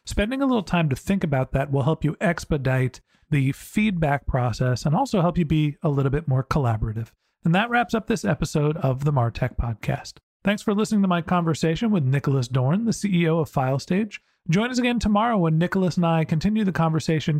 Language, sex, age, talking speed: English, male, 40-59, 205 wpm